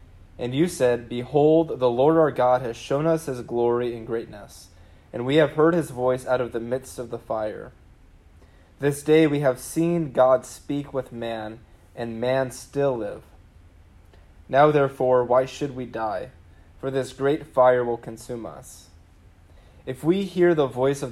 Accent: American